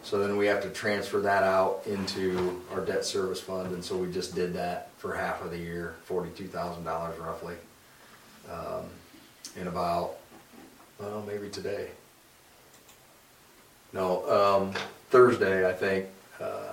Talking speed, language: 145 wpm, English